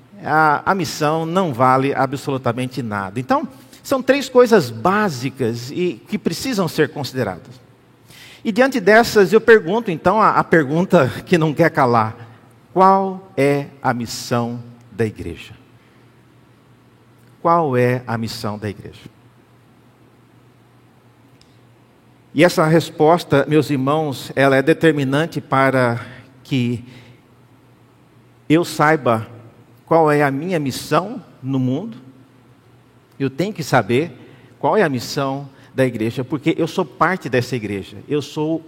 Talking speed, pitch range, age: 125 wpm, 125-175 Hz, 50-69